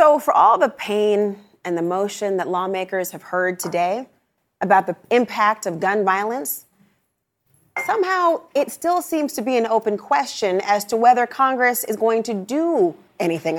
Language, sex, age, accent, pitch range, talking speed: English, female, 30-49, American, 185-250 Hz, 165 wpm